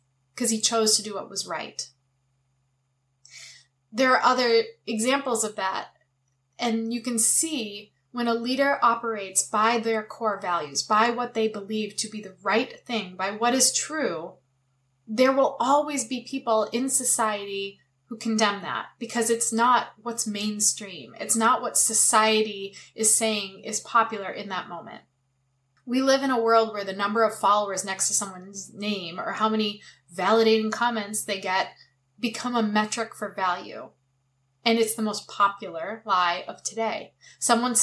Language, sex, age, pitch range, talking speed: English, female, 20-39, 175-235 Hz, 160 wpm